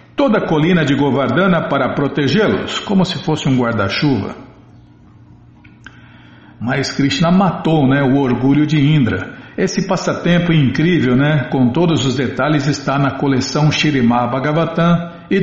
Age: 60-79